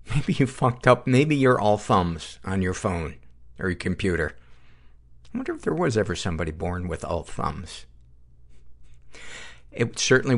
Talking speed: 155 wpm